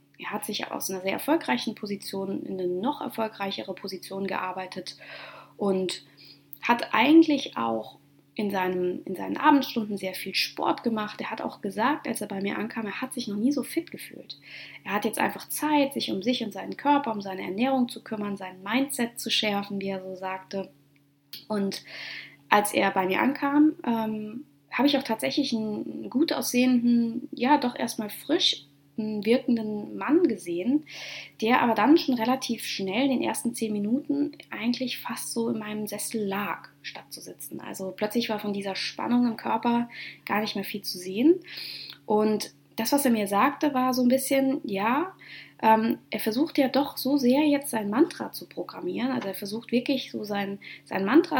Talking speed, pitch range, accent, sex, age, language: 180 wpm, 195-260 Hz, German, female, 20-39, German